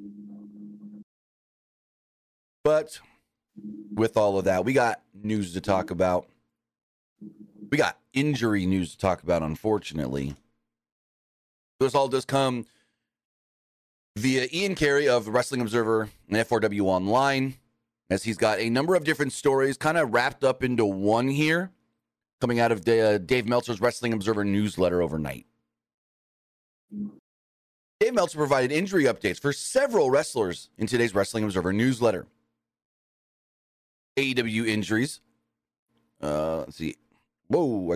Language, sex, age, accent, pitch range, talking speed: English, male, 30-49, American, 100-130 Hz, 120 wpm